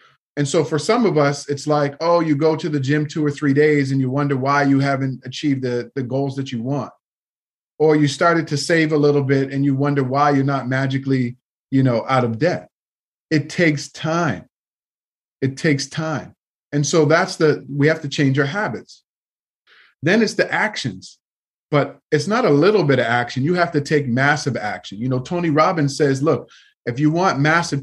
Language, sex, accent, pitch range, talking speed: English, male, American, 135-155 Hz, 205 wpm